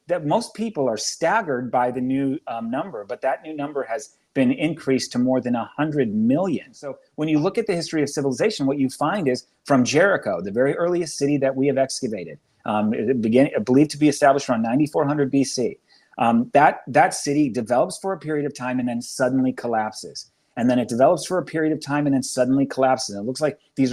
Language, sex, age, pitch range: English, male, 30-49, 130-160 Hz